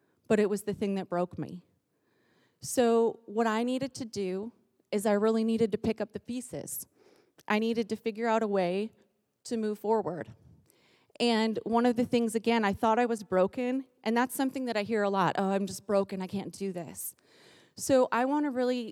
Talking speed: 205 wpm